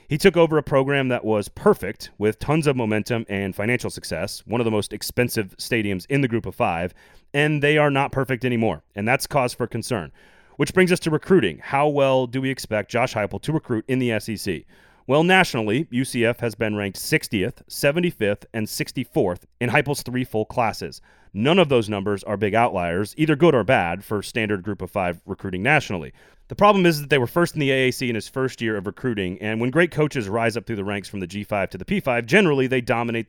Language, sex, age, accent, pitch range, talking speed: English, male, 30-49, American, 105-140 Hz, 220 wpm